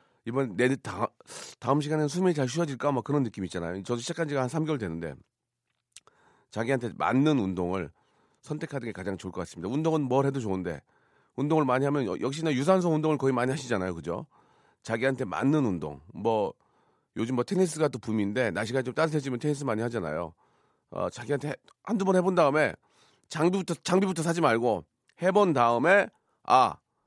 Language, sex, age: Korean, male, 40-59